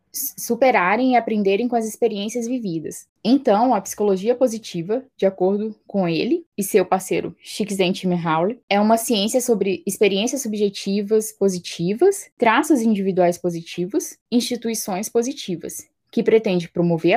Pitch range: 175-230 Hz